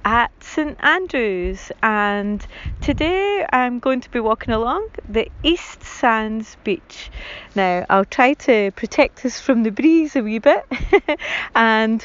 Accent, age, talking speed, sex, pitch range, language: British, 30-49, 140 wpm, female, 205-275 Hz, English